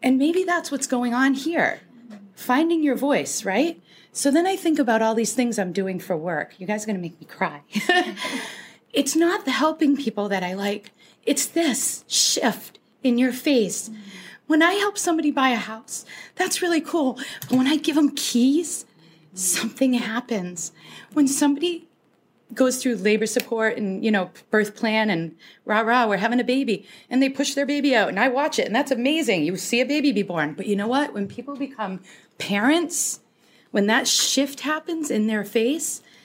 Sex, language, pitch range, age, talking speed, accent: female, English, 190-270 Hz, 30-49, 190 wpm, American